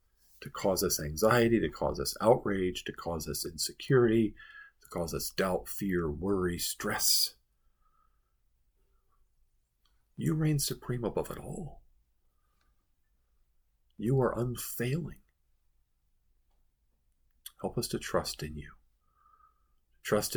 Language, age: English, 50-69